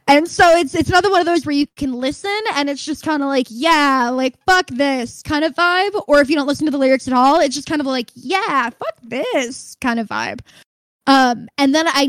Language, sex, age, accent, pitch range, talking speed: English, female, 10-29, American, 245-305 Hz, 250 wpm